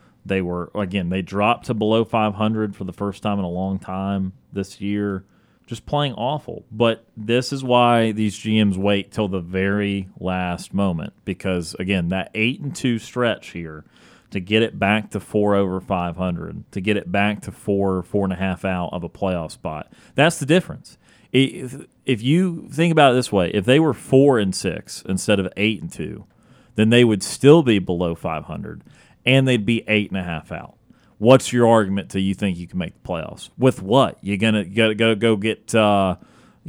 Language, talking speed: English, 200 wpm